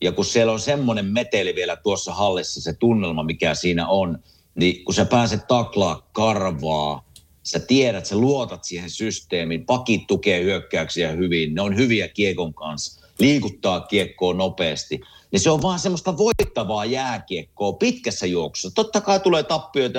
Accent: native